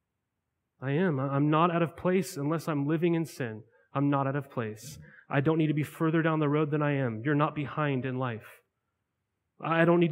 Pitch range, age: 120-155 Hz, 30-49